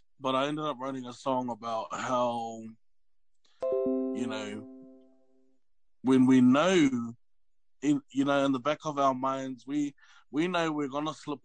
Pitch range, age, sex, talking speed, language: 115-140 Hz, 20-39, male, 145 wpm, English